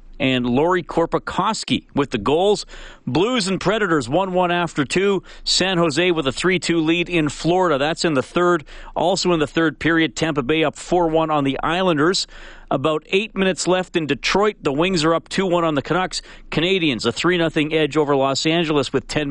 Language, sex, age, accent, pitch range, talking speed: English, male, 40-59, American, 130-175 Hz, 185 wpm